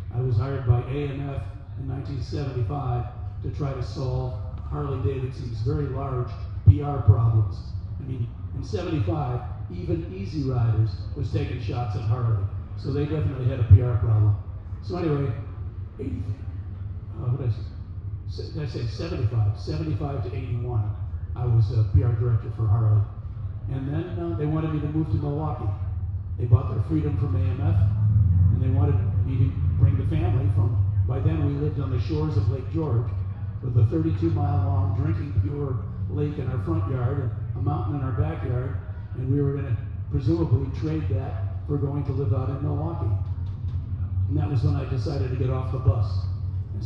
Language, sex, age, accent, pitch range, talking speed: English, male, 40-59, American, 100-120 Hz, 175 wpm